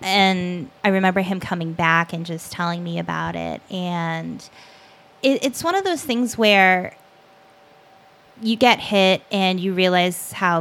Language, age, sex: English, 20-39, female